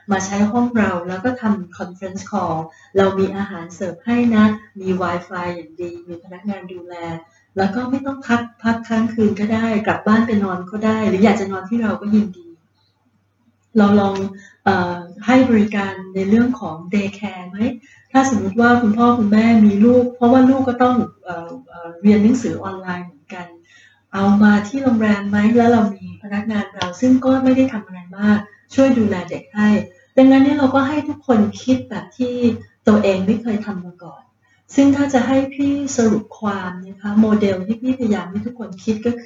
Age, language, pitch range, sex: 30-49, Thai, 190-235 Hz, female